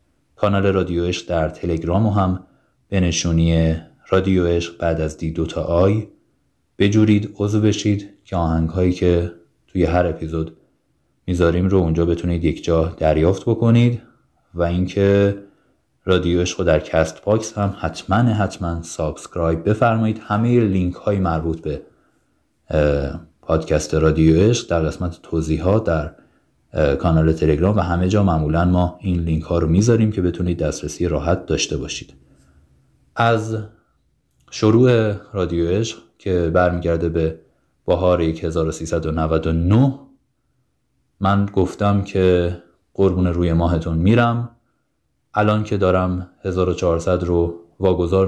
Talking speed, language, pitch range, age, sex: 120 wpm, Persian, 80-100 Hz, 30-49, male